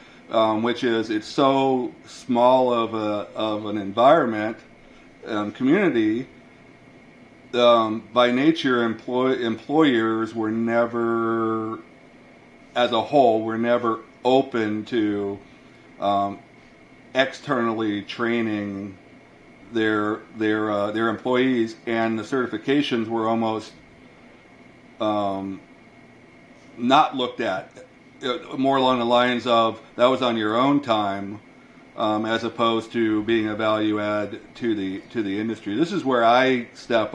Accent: American